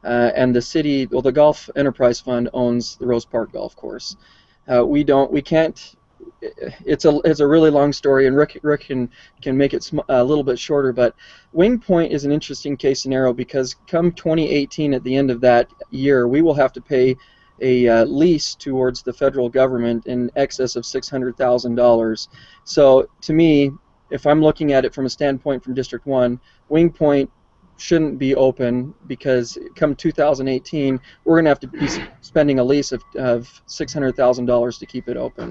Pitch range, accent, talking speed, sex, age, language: 125-145 Hz, American, 185 wpm, male, 20-39, English